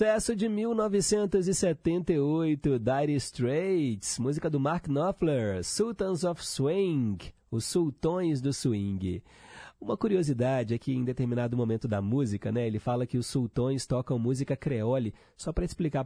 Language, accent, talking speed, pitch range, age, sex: Portuguese, Brazilian, 140 wpm, 120-160 Hz, 30-49, male